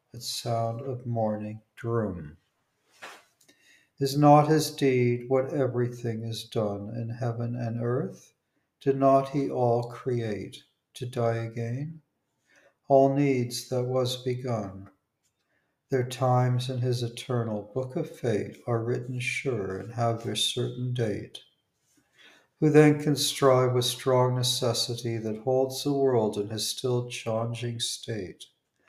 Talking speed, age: 130 wpm, 60-79